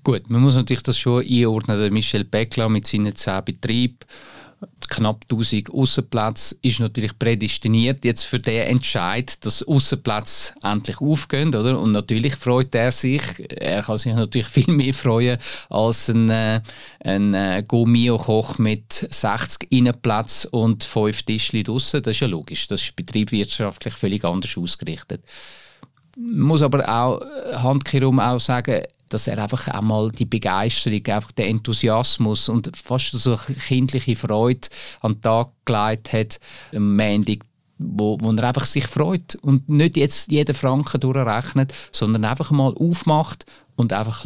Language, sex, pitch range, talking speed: German, male, 110-135 Hz, 145 wpm